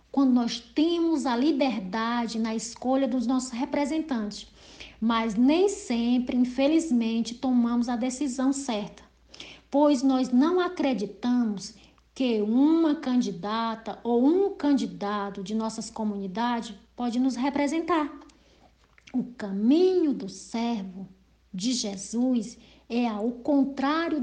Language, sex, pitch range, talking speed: English, female, 225-295 Hz, 105 wpm